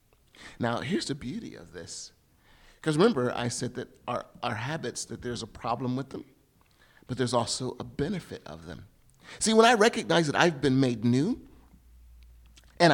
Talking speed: 170 wpm